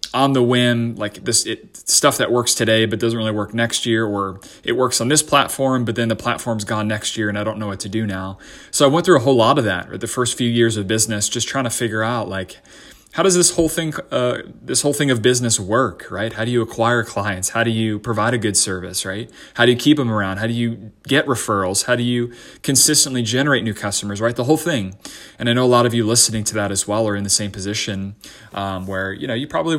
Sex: male